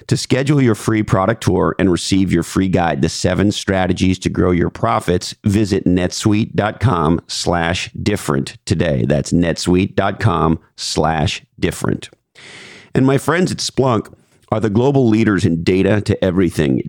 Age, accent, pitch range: 50-69, American, 85-105 Hz